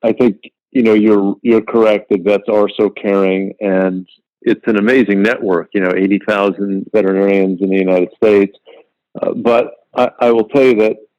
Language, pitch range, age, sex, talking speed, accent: English, 100-110 Hz, 50-69, male, 180 wpm, American